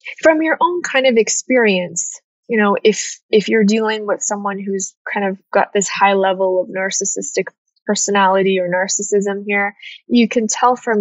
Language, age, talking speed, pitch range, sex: English, 10-29, 170 wpm, 195-245 Hz, female